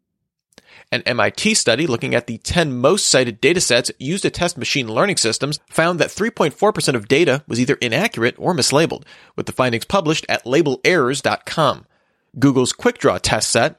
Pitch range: 120-170 Hz